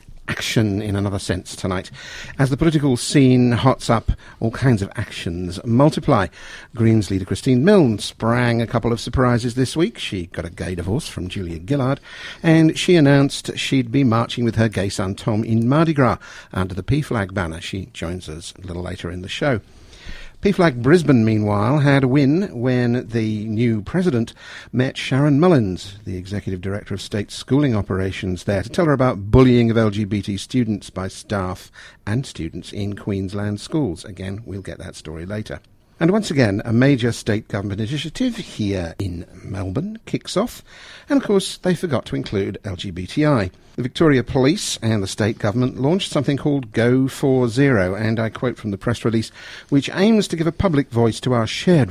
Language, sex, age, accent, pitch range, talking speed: English, male, 50-69, British, 95-130 Hz, 180 wpm